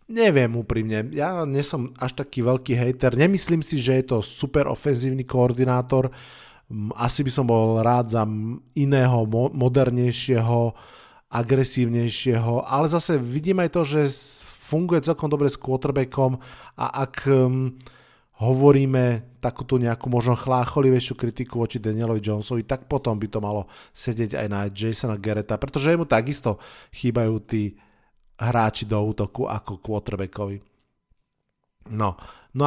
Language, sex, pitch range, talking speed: Slovak, male, 110-130 Hz, 130 wpm